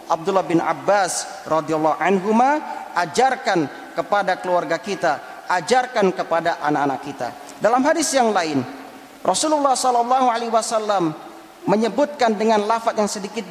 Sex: male